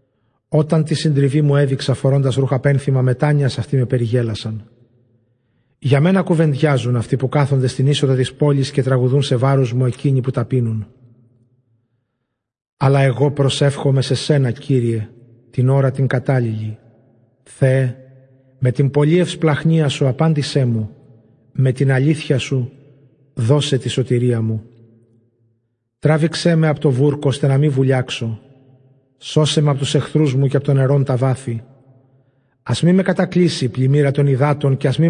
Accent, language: native, Greek